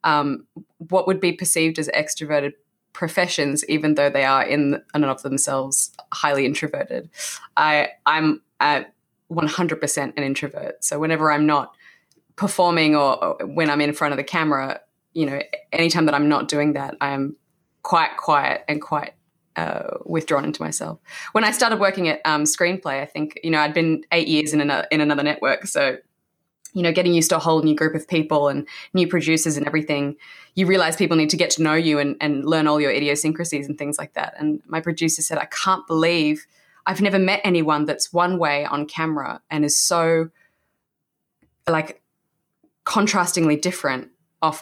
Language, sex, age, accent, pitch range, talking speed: English, female, 20-39, Australian, 150-170 Hz, 180 wpm